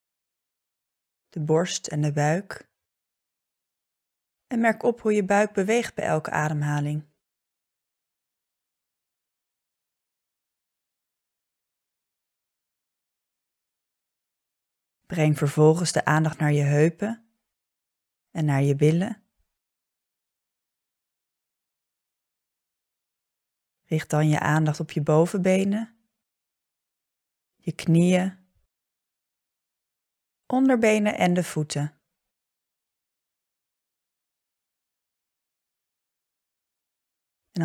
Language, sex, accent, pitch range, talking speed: Dutch, female, Dutch, 150-205 Hz, 65 wpm